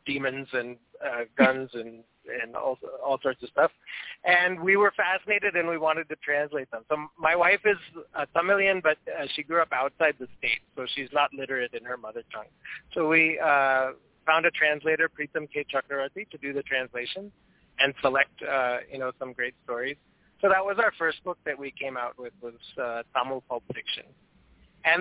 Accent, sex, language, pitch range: American, male, English, 130-175 Hz